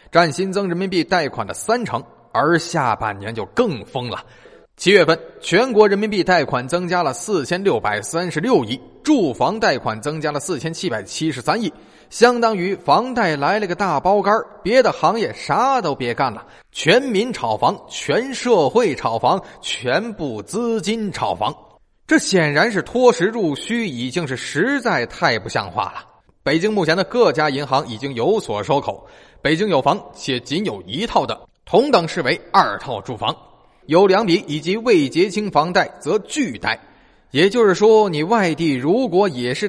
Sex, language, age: male, Chinese, 20-39